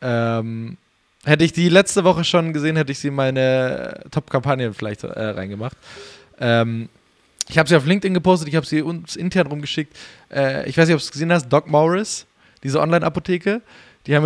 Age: 20-39